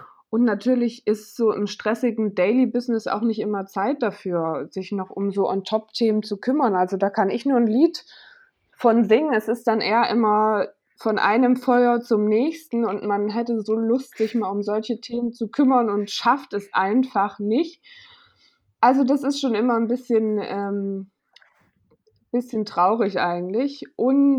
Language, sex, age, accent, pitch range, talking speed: German, female, 20-39, German, 200-245 Hz, 165 wpm